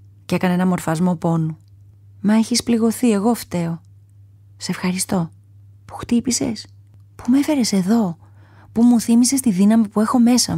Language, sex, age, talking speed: Greek, female, 30-49, 145 wpm